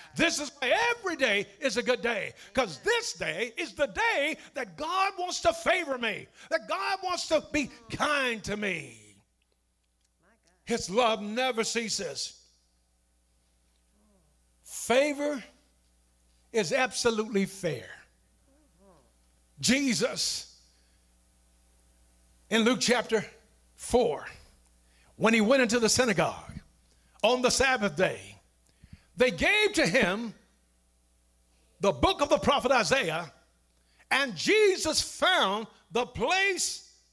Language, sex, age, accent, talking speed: English, male, 60-79, American, 110 wpm